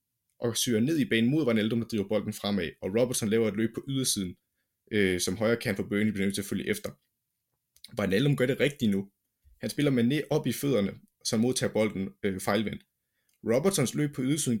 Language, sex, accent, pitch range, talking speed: Danish, male, native, 105-140 Hz, 210 wpm